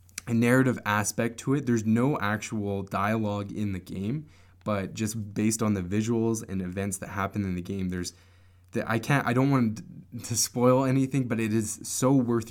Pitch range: 90-110 Hz